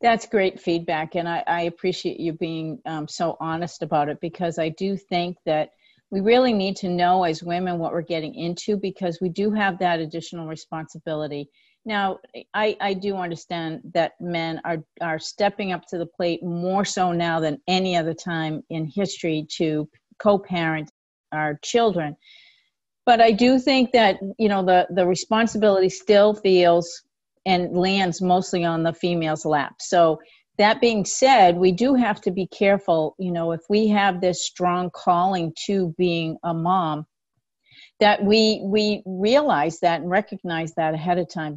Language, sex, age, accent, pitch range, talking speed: English, female, 50-69, American, 165-195 Hz, 165 wpm